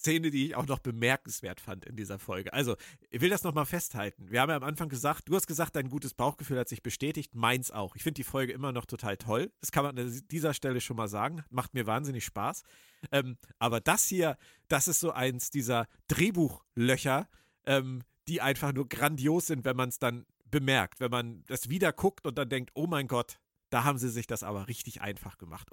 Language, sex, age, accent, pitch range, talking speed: German, male, 40-59, German, 120-160 Hz, 220 wpm